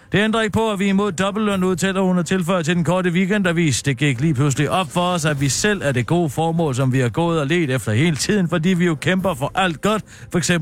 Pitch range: 145-185 Hz